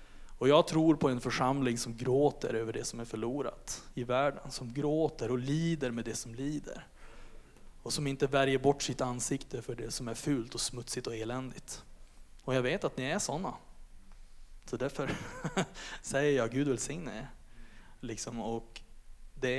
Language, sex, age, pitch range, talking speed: Swedish, male, 20-39, 120-160 Hz, 170 wpm